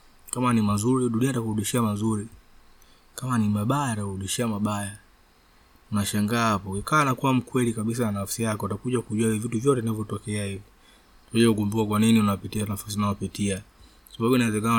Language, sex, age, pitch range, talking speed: Swahili, male, 20-39, 105-120 Hz, 120 wpm